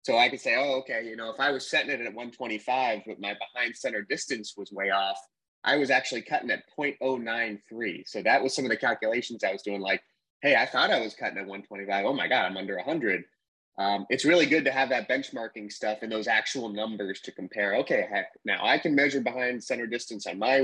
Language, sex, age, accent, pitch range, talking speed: English, male, 20-39, American, 105-130 Hz, 235 wpm